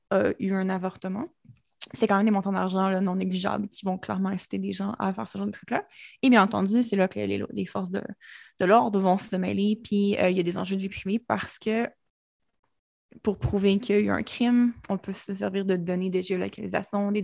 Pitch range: 190-215 Hz